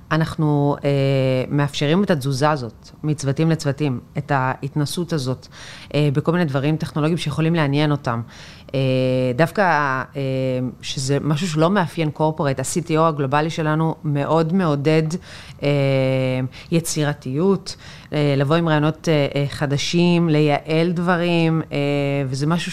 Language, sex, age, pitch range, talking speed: Hebrew, female, 30-49, 140-160 Hz, 120 wpm